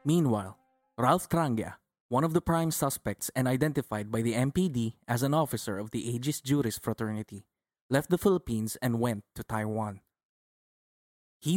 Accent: Filipino